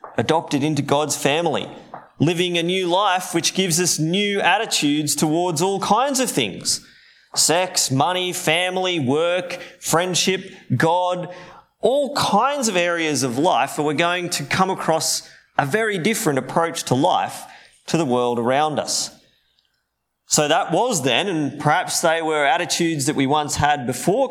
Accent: Australian